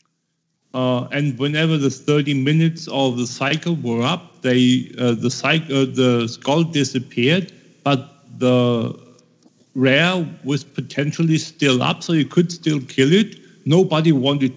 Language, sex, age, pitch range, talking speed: English, male, 50-69, 130-160 Hz, 140 wpm